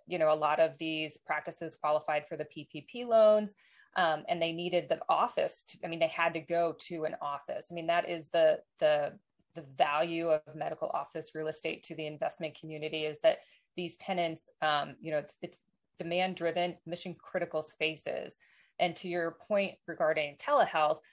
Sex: female